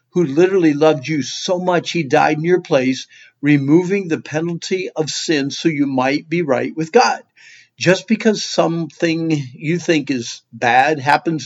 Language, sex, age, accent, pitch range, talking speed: English, male, 50-69, American, 135-180 Hz, 160 wpm